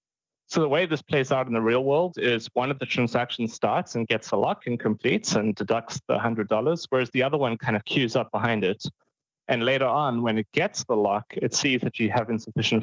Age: 30-49